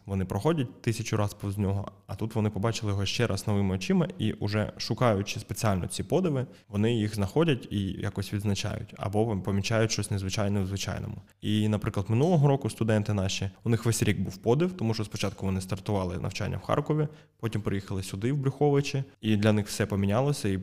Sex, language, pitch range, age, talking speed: male, Ukrainian, 100-115 Hz, 20-39, 185 wpm